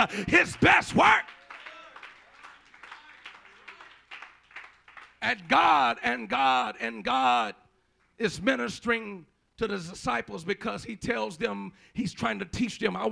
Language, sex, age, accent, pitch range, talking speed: English, male, 50-69, American, 215-275 Hz, 110 wpm